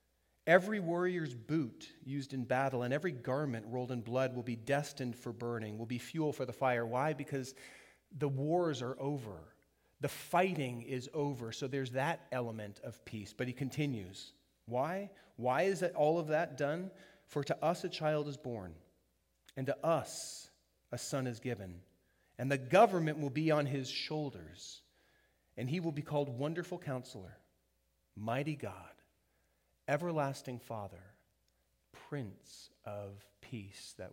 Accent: American